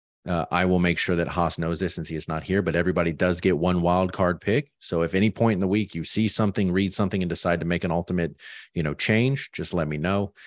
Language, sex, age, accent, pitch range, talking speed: English, male, 30-49, American, 80-95 Hz, 270 wpm